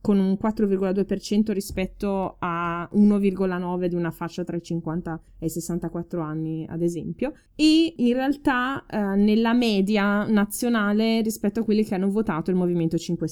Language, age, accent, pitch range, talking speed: Italian, 20-39, native, 170-215 Hz, 155 wpm